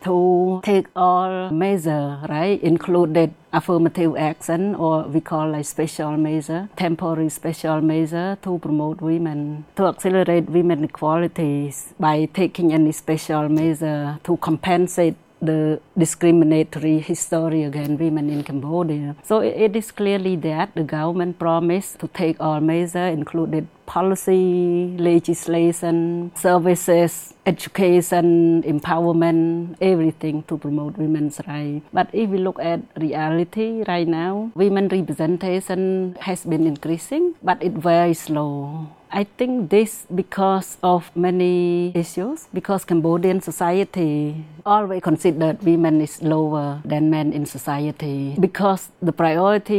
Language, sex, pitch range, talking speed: English, female, 155-180 Hz, 125 wpm